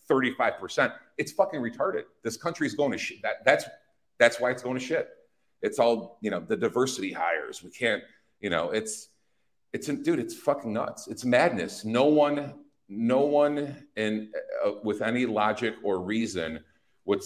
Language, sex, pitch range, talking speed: English, male, 110-150 Hz, 175 wpm